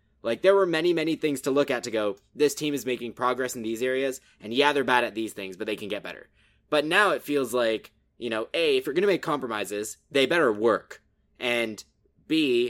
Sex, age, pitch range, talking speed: male, 20-39, 110-150 Hz, 235 wpm